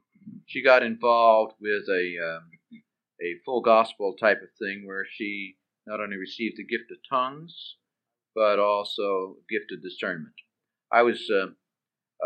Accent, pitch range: American, 100-165 Hz